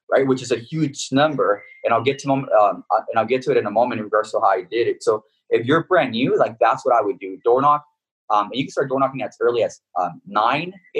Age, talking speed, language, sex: 20-39, 280 wpm, English, male